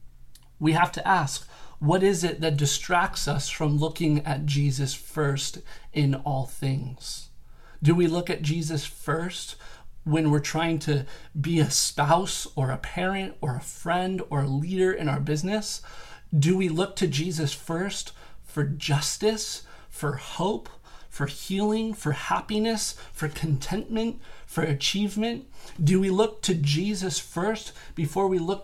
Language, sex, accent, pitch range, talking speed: English, male, American, 140-180 Hz, 145 wpm